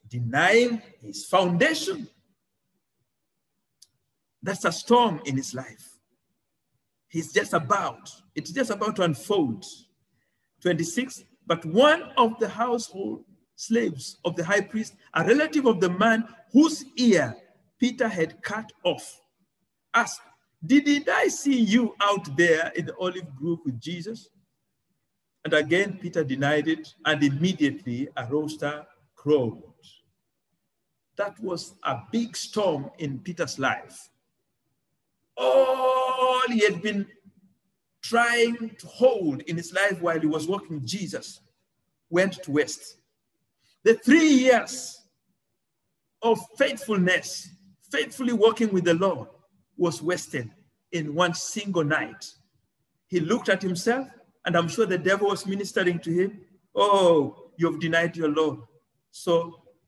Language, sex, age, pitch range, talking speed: English, male, 50-69, 165-230 Hz, 125 wpm